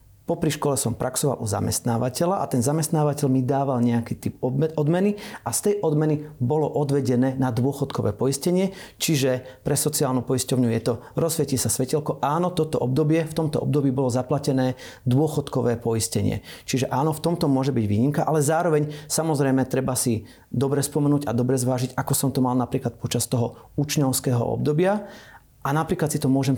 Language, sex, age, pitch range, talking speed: Slovak, male, 40-59, 120-145 Hz, 165 wpm